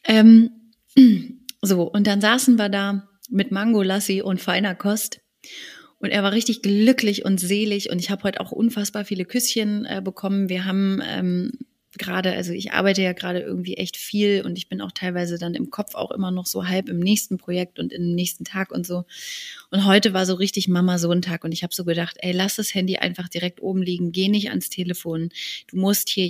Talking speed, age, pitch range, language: 210 wpm, 30-49, 180-225 Hz, German